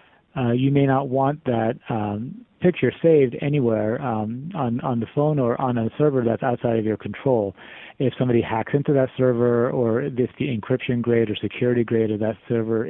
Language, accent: English, American